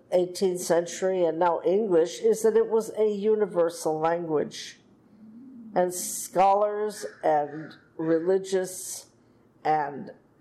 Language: English